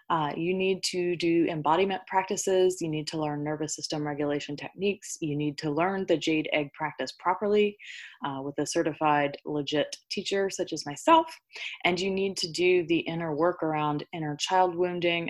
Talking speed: 175 wpm